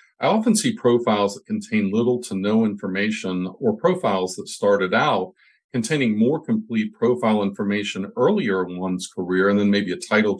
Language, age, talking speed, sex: English, 50-69, 165 wpm, male